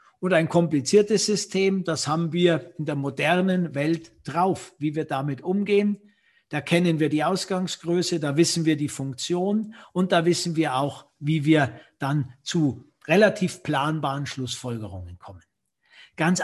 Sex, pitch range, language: male, 145-190 Hz, German